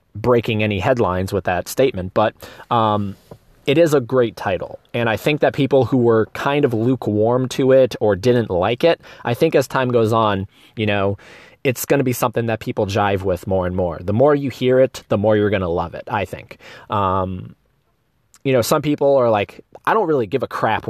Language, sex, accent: English, male, American